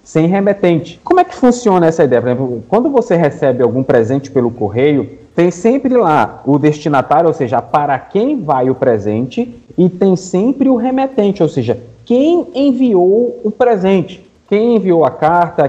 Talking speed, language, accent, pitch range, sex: 170 wpm, Portuguese, Brazilian, 135-205 Hz, male